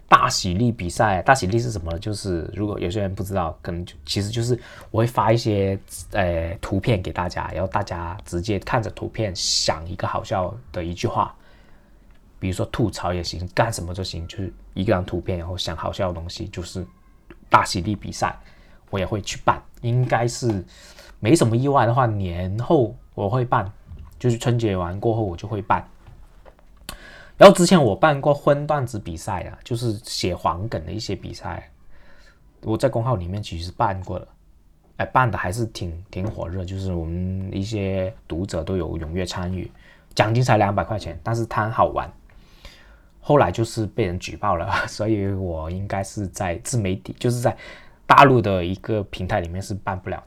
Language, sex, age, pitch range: Chinese, male, 20-39, 90-115 Hz